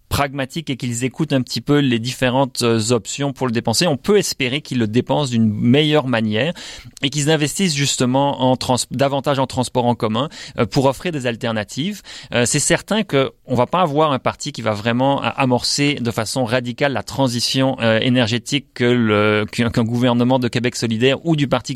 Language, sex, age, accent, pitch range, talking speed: French, male, 30-49, French, 120-150 Hz, 190 wpm